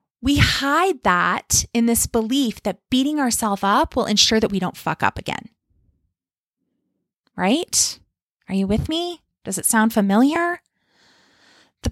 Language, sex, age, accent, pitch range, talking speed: English, female, 30-49, American, 210-315 Hz, 140 wpm